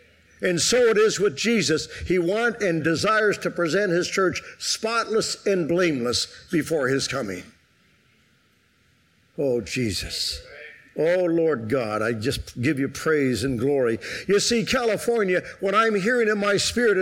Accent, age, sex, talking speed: American, 50-69, male, 145 wpm